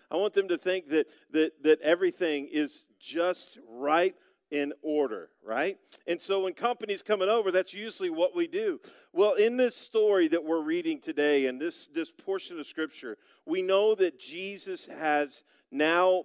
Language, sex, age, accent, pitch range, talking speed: English, male, 50-69, American, 150-220 Hz, 170 wpm